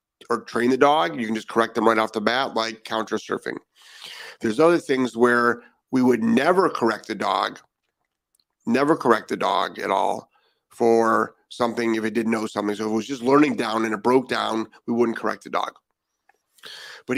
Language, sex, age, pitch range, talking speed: English, male, 40-59, 115-125 Hz, 195 wpm